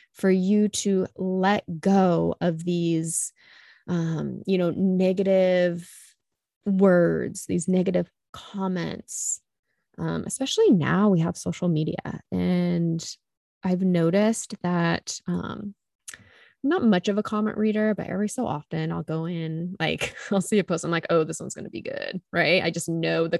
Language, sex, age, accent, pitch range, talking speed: English, female, 20-39, American, 170-205 Hz, 150 wpm